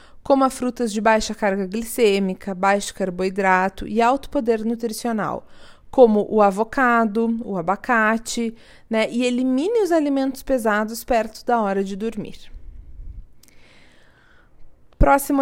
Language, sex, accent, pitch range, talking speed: Portuguese, female, Brazilian, 205-255 Hz, 115 wpm